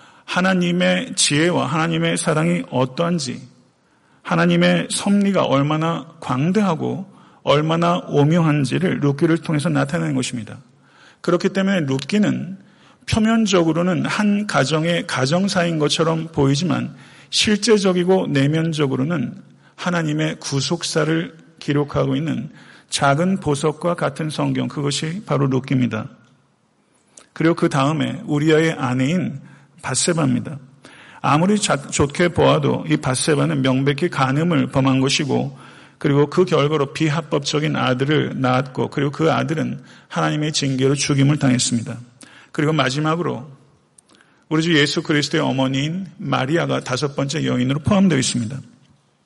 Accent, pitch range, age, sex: native, 135-170 Hz, 40-59, male